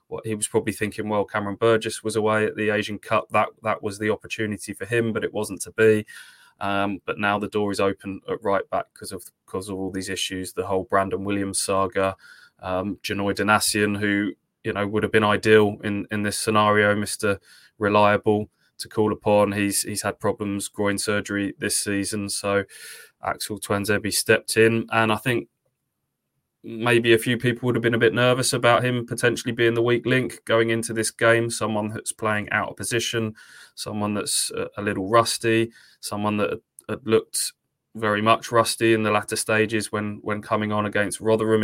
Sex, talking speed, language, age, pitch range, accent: male, 190 wpm, English, 20-39, 100-110 Hz, British